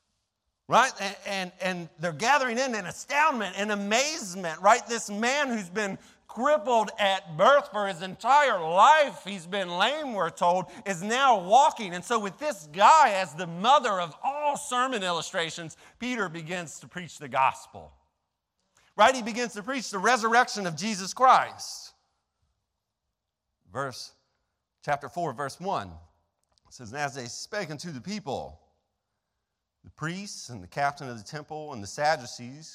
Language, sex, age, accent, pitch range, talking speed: English, male, 40-59, American, 140-225 Hz, 150 wpm